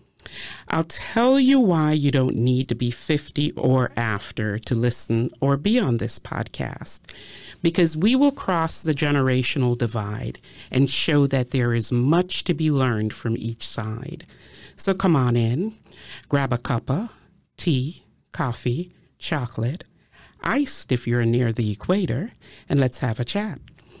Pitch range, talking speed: 120-175 Hz, 150 wpm